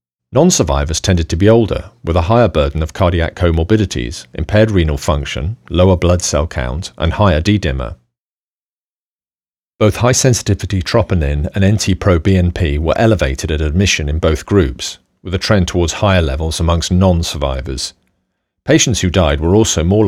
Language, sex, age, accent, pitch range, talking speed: English, male, 40-59, British, 80-95 Hz, 145 wpm